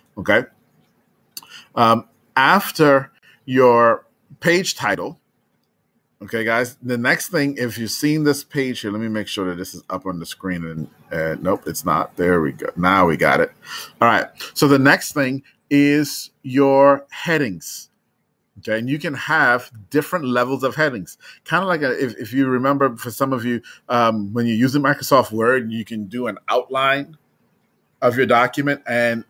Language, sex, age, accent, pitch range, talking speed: English, male, 30-49, American, 110-140 Hz, 170 wpm